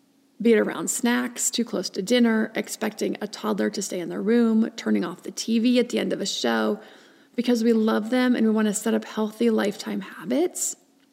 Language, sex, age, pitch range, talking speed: English, female, 30-49, 210-260 Hz, 210 wpm